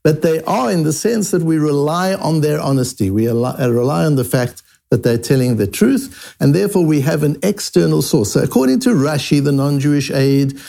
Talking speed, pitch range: 200 wpm, 125-180 Hz